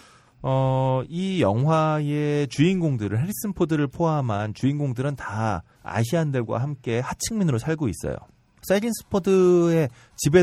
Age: 30-49